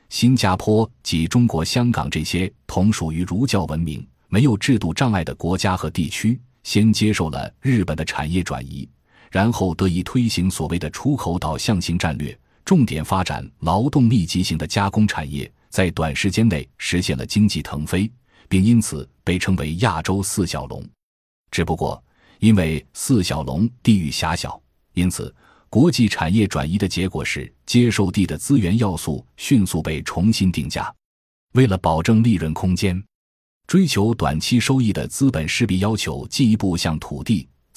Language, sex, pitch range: Chinese, male, 80-110 Hz